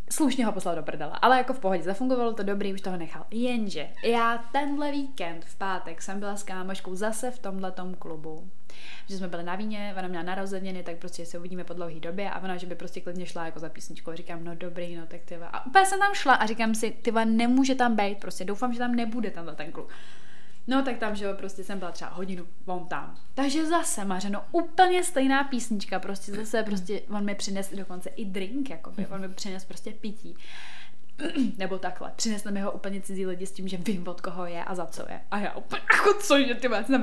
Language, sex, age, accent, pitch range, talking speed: Czech, female, 20-39, native, 180-225 Hz, 230 wpm